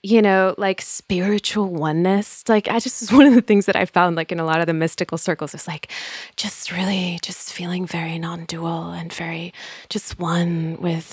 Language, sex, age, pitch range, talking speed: English, female, 20-39, 165-195 Hz, 195 wpm